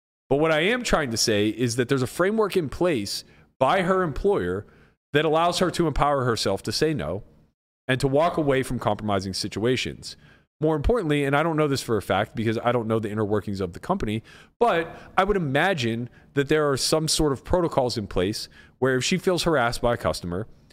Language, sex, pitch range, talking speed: English, male, 110-160 Hz, 215 wpm